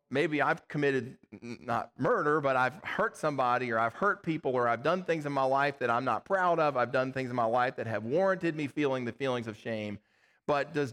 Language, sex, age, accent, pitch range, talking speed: English, male, 40-59, American, 120-160 Hz, 230 wpm